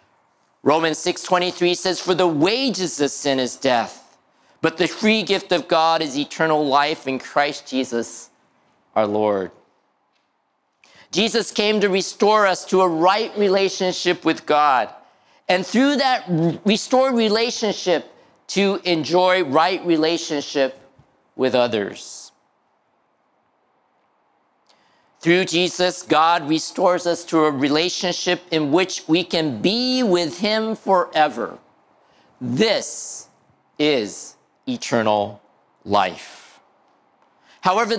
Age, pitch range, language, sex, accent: 50-69, 160-225 Hz, Japanese, male, American